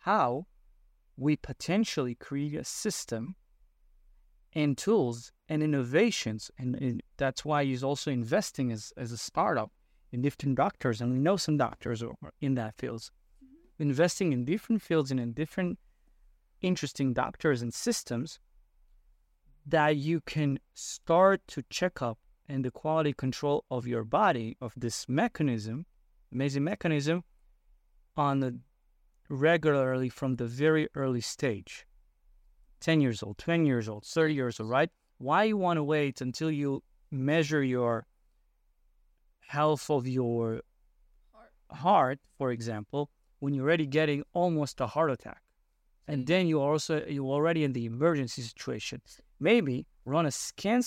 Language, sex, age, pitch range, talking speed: English, male, 30-49, 120-160 Hz, 140 wpm